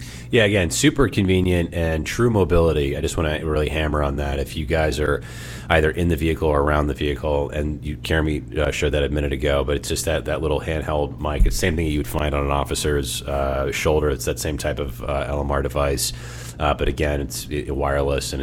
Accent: American